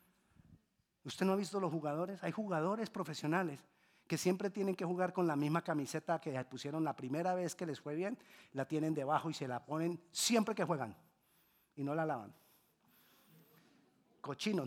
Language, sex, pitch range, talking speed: Spanish, male, 155-225 Hz, 170 wpm